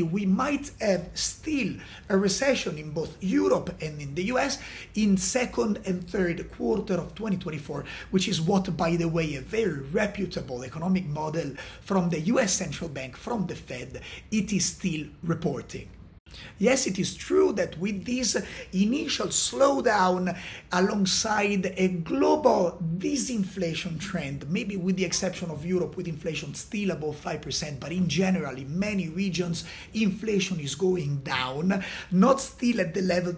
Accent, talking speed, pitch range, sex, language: Italian, 150 wpm, 165-210 Hz, male, English